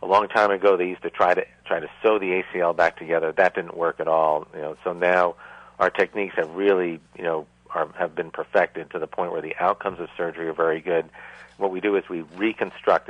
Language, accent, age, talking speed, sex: English, American, 50-69, 240 wpm, male